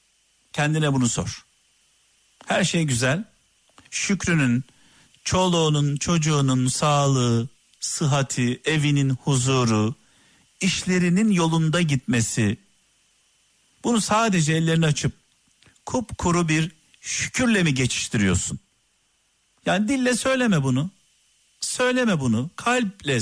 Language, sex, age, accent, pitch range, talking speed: Turkish, male, 50-69, native, 130-180 Hz, 85 wpm